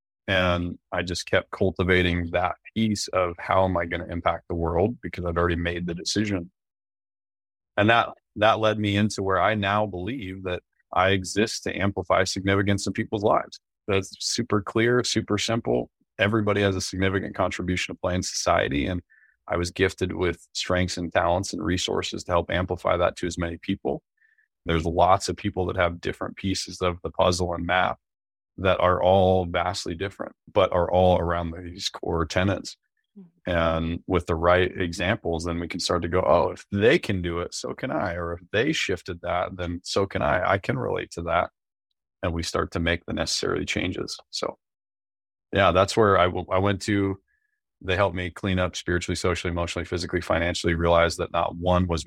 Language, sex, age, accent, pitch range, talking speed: English, male, 30-49, American, 85-100 Hz, 190 wpm